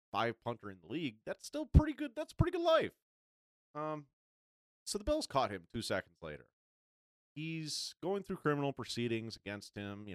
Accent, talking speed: American, 170 wpm